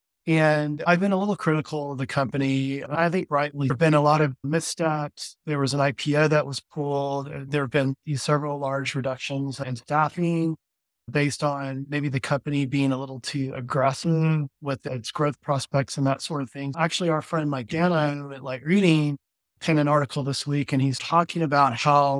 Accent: American